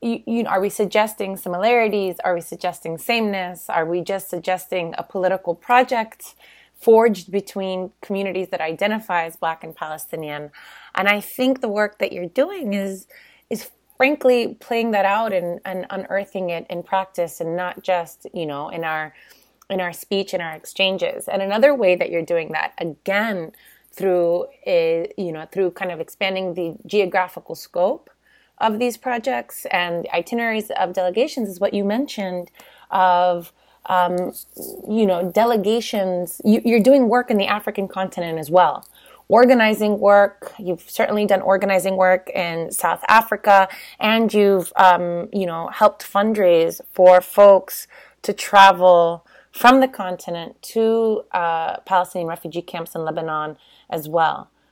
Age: 30-49